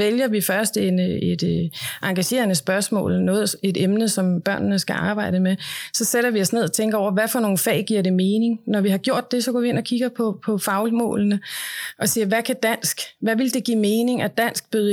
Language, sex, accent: Danish, female, native